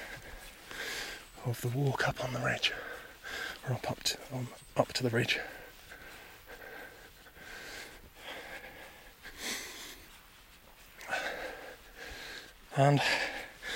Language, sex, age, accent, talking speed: English, male, 30-49, British, 75 wpm